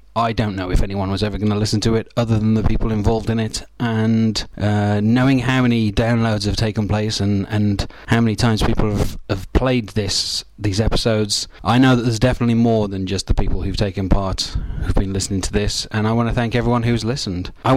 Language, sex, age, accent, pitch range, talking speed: English, male, 30-49, British, 100-120 Hz, 225 wpm